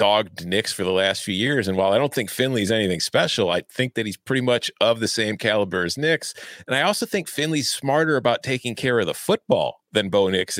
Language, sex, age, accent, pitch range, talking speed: English, male, 40-59, American, 95-135 Hz, 240 wpm